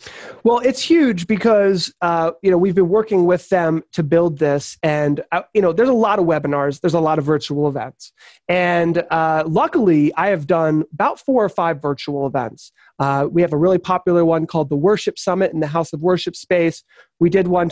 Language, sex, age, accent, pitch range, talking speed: English, male, 30-49, American, 160-205 Hz, 210 wpm